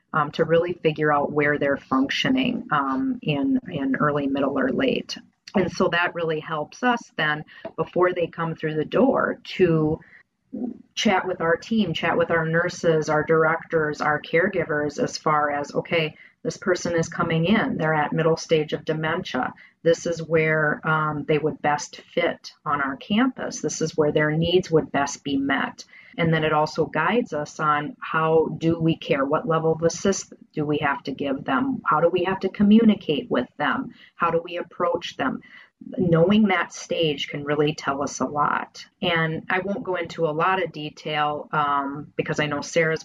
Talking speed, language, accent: 185 wpm, English, American